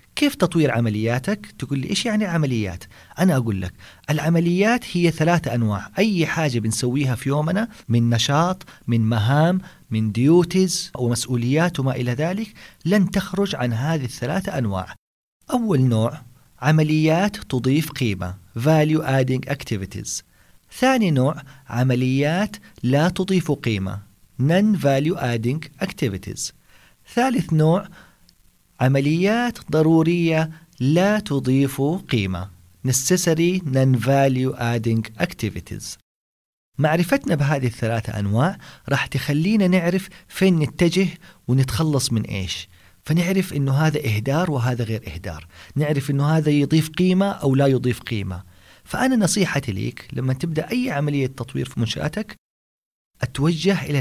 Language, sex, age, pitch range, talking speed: Arabic, male, 40-59, 115-170 Hz, 115 wpm